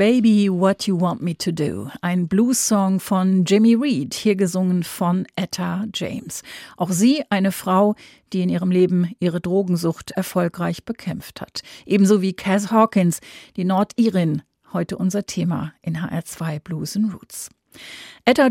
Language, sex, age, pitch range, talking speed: German, female, 40-59, 180-215 Hz, 145 wpm